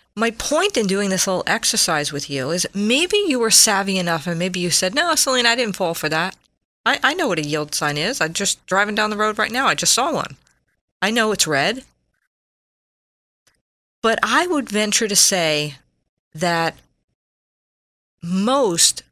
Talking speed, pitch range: 180 wpm, 155-215 Hz